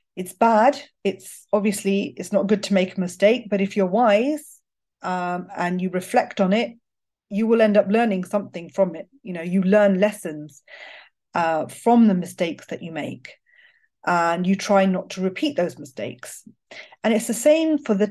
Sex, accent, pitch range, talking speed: female, British, 175-215 Hz, 180 wpm